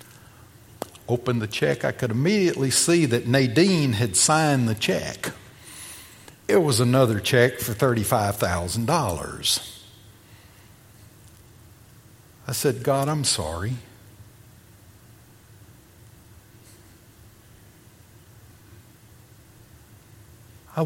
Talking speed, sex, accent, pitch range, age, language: 70 wpm, male, American, 105-130 Hz, 60-79, English